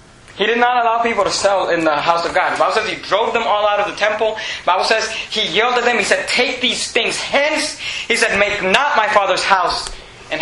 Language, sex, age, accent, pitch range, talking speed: English, male, 20-39, American, 170-220 Hz, 255 wpm